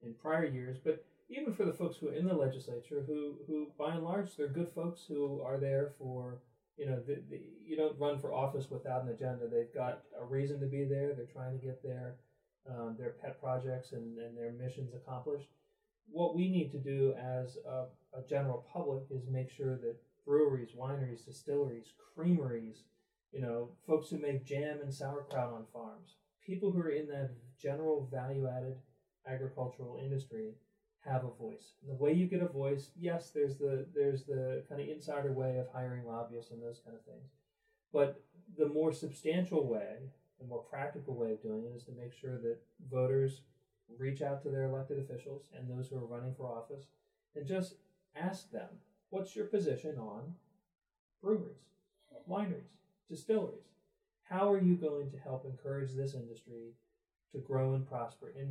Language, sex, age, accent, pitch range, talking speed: English, male, 40-59, American, 130-155 Hz, 180 wpm